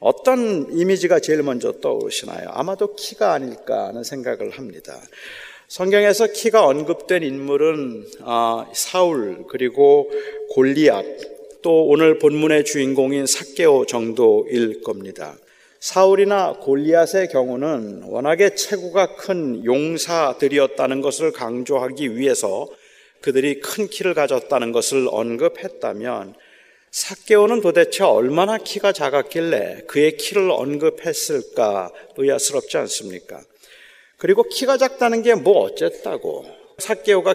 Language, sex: Korean, male